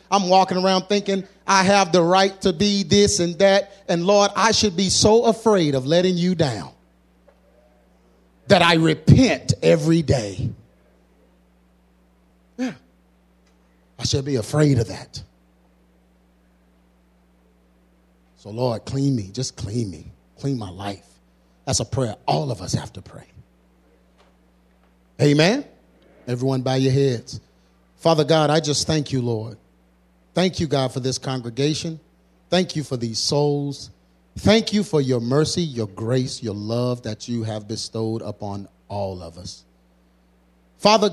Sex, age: male, 30-49